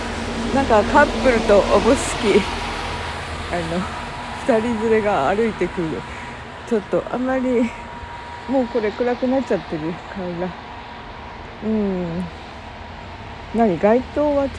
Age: 40-59